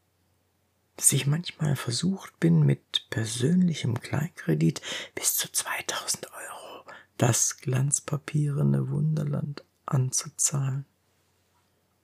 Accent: German